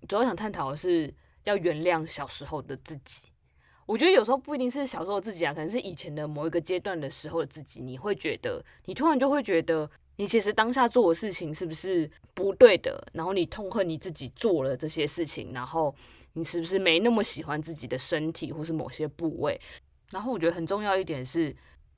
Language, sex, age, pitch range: Chinese, female, 20-39, 135-185 Hz